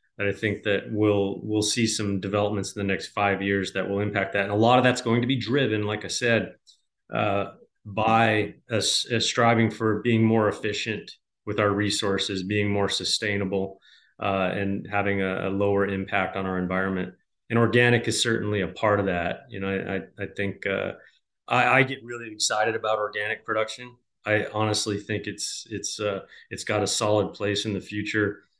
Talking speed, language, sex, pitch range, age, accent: 190 wpm, English, male, 100-110 Hz, 30-49, American